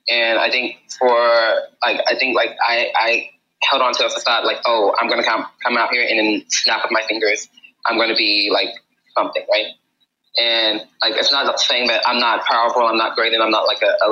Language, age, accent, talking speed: English, 20-39, American, 225 wpm